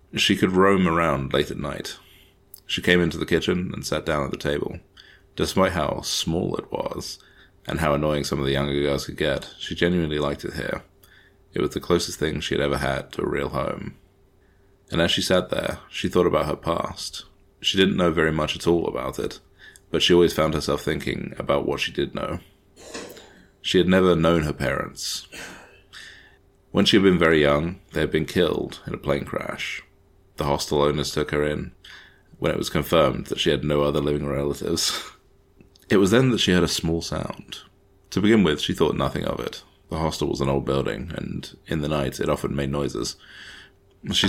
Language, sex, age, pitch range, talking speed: English, male, 30-49, 70-95 Hz, 205 wpm